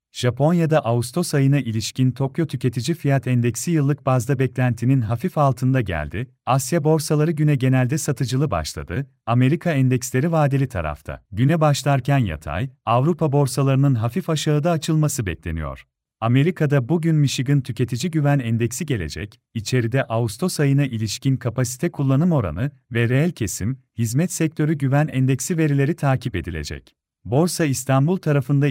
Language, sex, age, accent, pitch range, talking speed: Turkish, male, 40-59, native, 125-155 Hz, 125 wpm